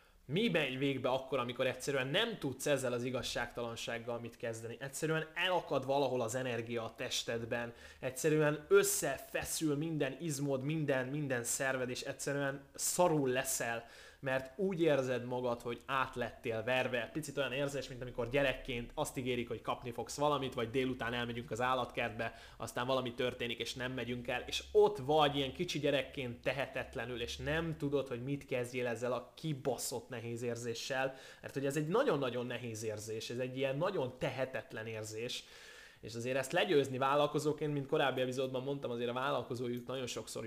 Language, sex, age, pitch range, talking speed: Hungarian, male, 20-39, 115-140 Hz, 160 wpm